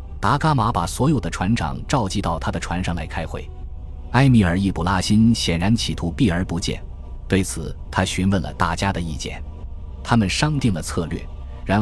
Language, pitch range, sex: Chinese, 80-105 Hz, male